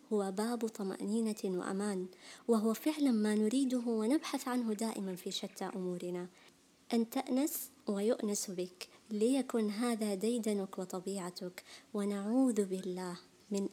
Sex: male